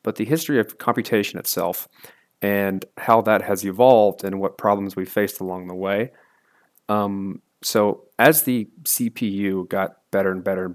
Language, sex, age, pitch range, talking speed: English, male, 30-49, 95-110 Hz, 160 wpm